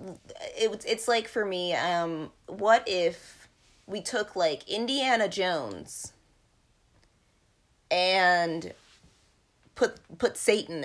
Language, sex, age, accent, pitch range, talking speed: English, female, 30-49, American, 165-210 Hz, 95 wpm